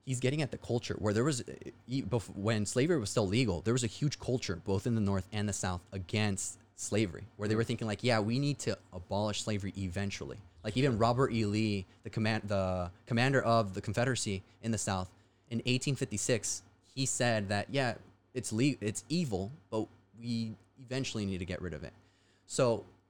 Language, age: English, 20-39